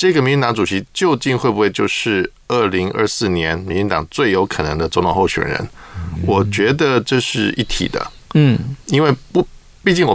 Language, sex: Chinese, male